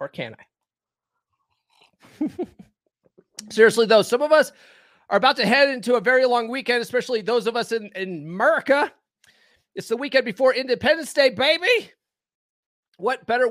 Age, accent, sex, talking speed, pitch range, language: 30-49, American, male, 145 wpm, 175-255 Hz, English